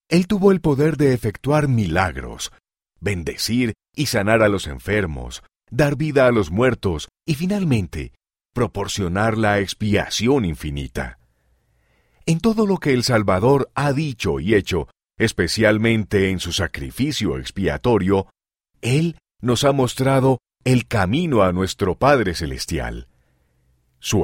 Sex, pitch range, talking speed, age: male, 90-135 Hz, 125 wpm, 40-59